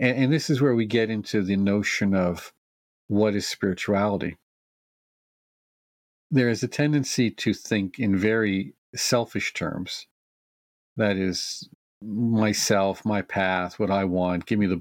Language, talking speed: English, 140 wpm